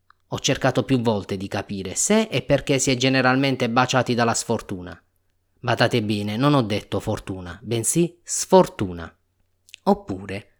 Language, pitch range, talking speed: Italian, 95-150 Hz, 135 wpm